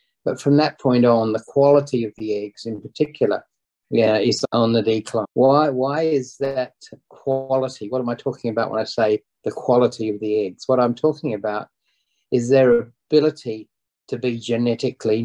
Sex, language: male, English